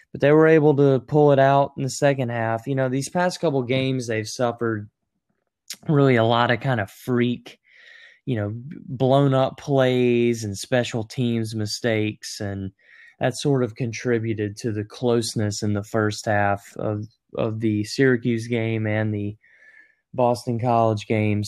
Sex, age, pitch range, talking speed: male, 20-39, 110-125 Hz, 160 wpm